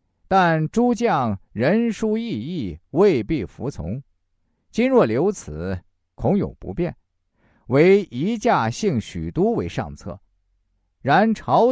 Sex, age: male, 50-69